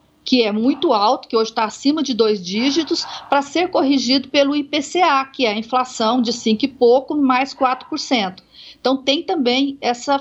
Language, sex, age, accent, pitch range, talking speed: Portuguese, female, 50-69, Brazilian, 225-295 Hz, 175 wpm